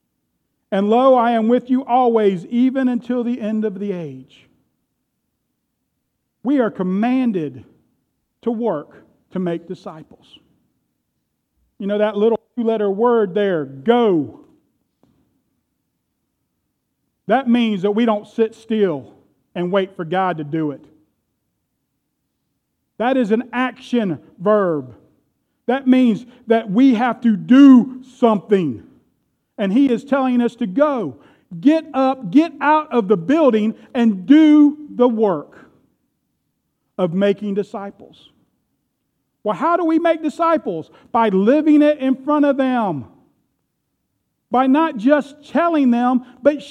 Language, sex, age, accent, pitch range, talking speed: English, male, 40-59, American, 205-270 Hz, 125 wpm